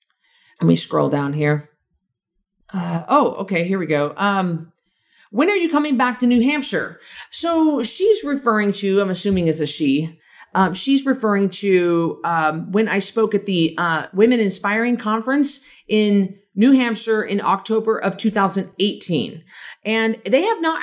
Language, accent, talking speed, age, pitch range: English, American, 155 wpm, 40-59, 165-215 Hz